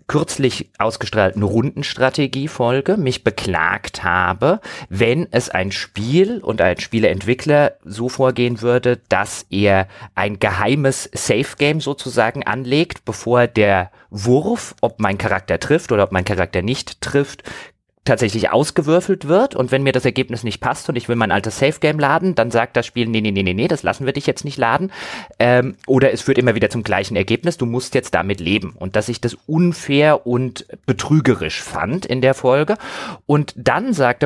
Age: 30-49